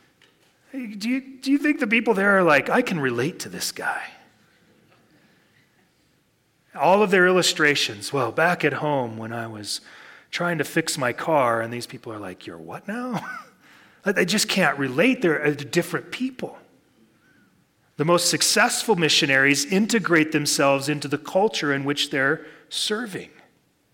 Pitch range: 140-185 Hz